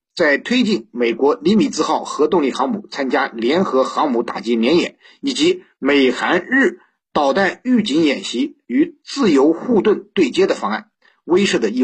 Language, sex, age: Chinese, male, 50-69